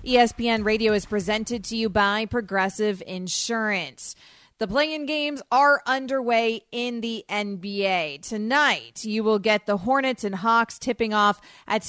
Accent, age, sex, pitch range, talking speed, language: American, 30-49, female, 200-235 Hz, 140 wpm, English